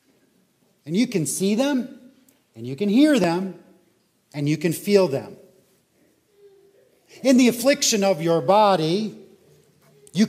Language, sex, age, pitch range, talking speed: English, male, 40-59, 165-235 Hz, 130 wpm